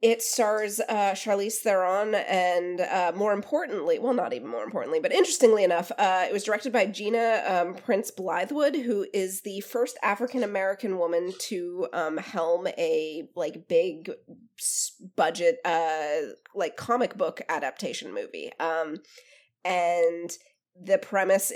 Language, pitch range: English, 180-250 Hz